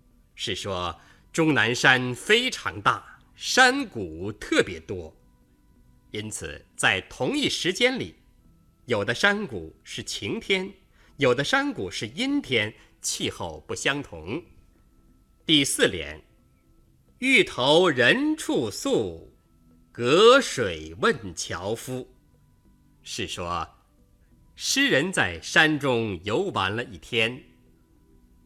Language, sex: Chinese, male